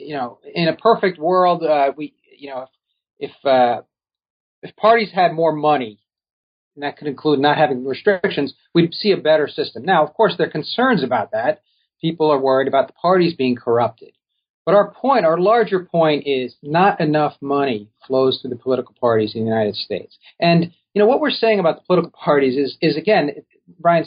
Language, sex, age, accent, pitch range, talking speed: English, male, 40-59, American, 135-180 Hz, 195 wpm